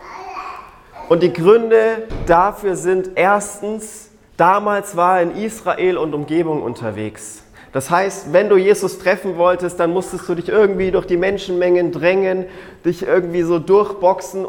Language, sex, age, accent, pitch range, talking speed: German, male, 30-49, German, 150-195 Hz, 140 wpm